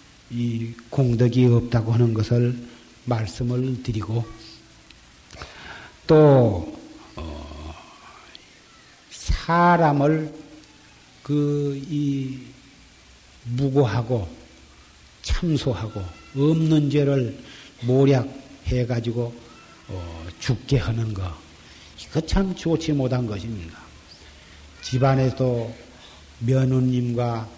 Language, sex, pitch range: Korean, male, 110-140 Hz